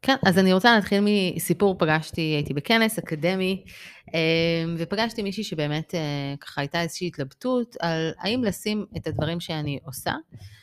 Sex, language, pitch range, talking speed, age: female, Hebrew, 155-200 Hz, 135 wpm, 30-49